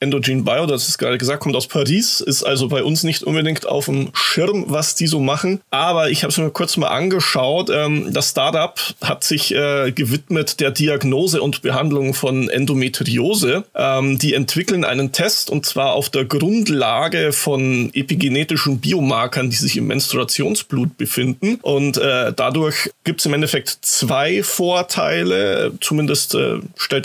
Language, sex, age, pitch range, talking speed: German, male, 30-49, 135-165 Hz, 150 wpm